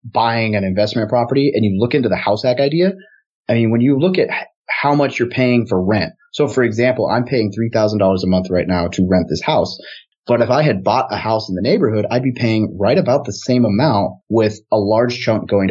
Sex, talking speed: male, 235 wpm